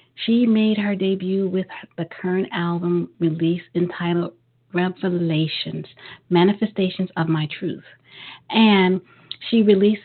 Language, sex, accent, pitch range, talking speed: English, female, American, 175-205 Hz, 105 wpm